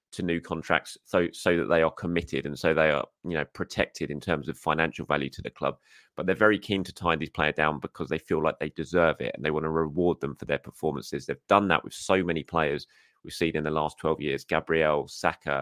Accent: British